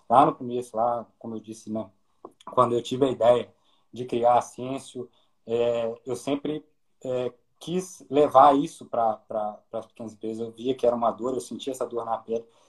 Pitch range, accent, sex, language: 115-130 Hz, Brazilian, male, Portuguese